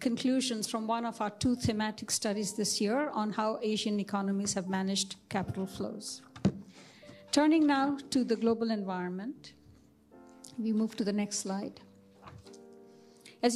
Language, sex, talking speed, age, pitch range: Indonesian, female, 135 wpm, 50-69, 200-240 Hz